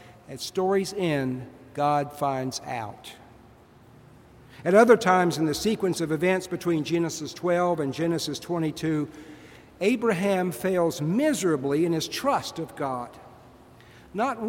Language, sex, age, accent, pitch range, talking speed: English, male, 60-79, American, 150-200 Hz, 120 wpm